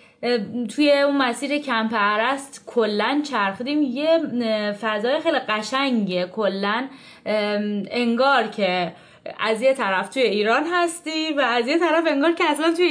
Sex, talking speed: female, 125 wpm